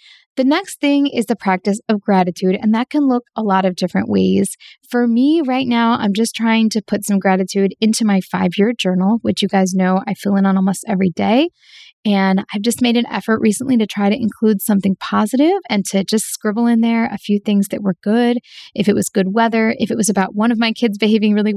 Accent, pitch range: American, 195-235 Hz